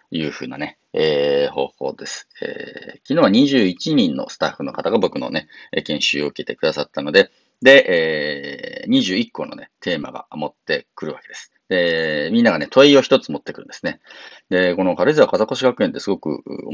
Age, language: 40-59, Japanese